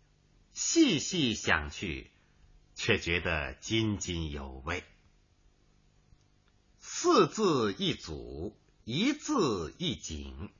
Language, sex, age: Chinese, male, 50-69